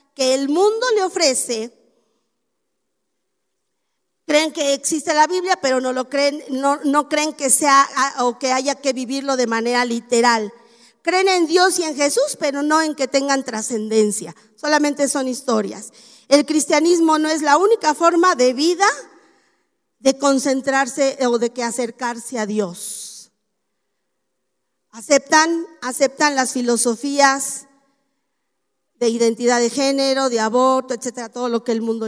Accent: American